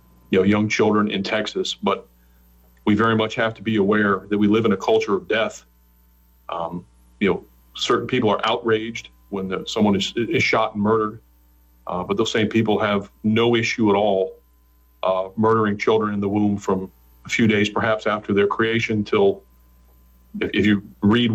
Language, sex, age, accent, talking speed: English, male, 40-59, American, 185 wpm